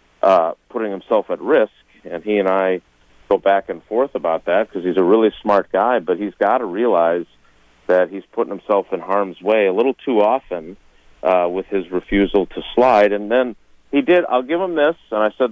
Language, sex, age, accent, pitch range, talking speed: English, male, 40-59, American, 95-145 Hz, 210 wpm